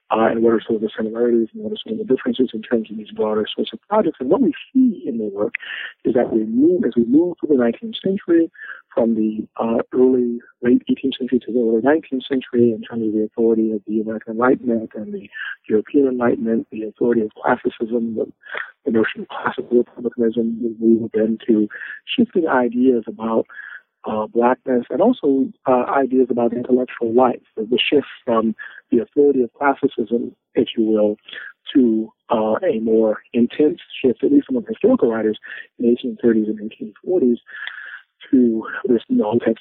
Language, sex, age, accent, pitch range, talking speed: English, male, 40-59, American, 110-135 Hz, 185 wpm